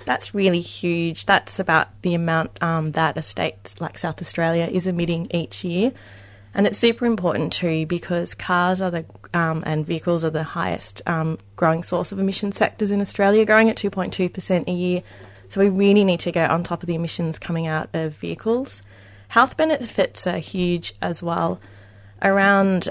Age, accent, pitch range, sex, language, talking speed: 20-39, Australian, 160-190 Hz, female, English, 180 wpm